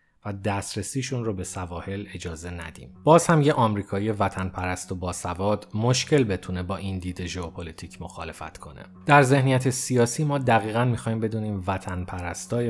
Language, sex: Persian, male